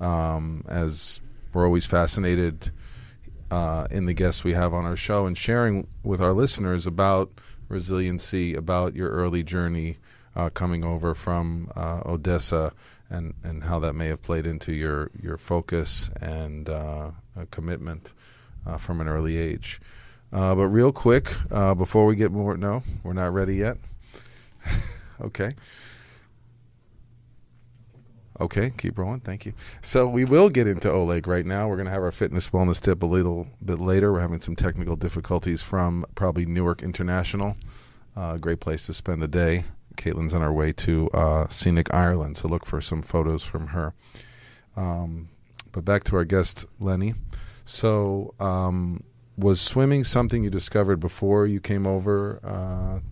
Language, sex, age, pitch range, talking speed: English, male, 40-59, 85-105 Hz, 160 wpm